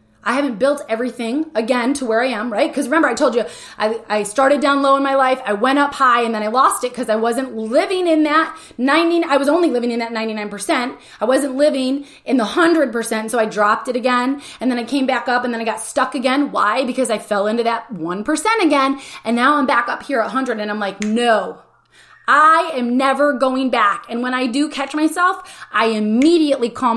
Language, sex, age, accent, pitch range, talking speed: English, female, 20-39, American, 225-295 Hz, 230 wpm